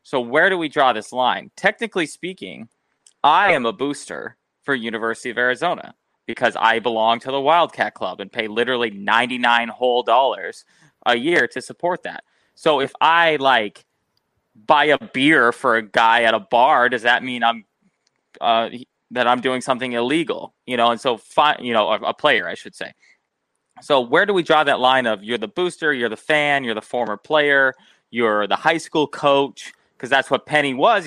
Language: English